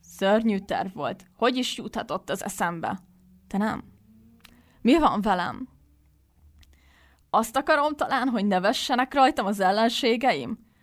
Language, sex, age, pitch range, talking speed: Hungarian, female, 20-39, 185-220 Hz, 120 wpm